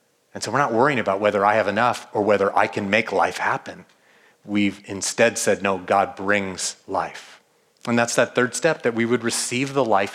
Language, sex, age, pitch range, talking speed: English, male, 30-49, 135-205 Hz, 205 wpm